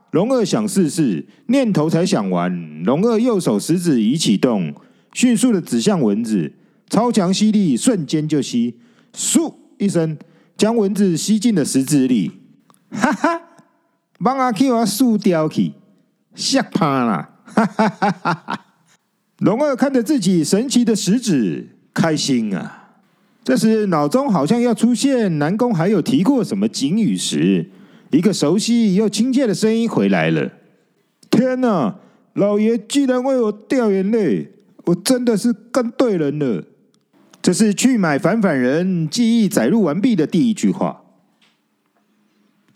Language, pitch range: Chinese, 185-240 Hz